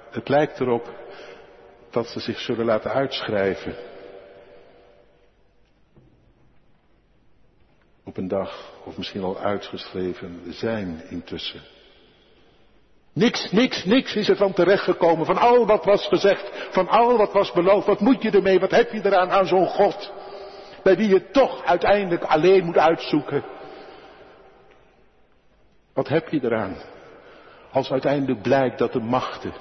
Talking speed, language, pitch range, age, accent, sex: 130 wpm, Dutch, 120-190 Hz, 60-79, Dutch, male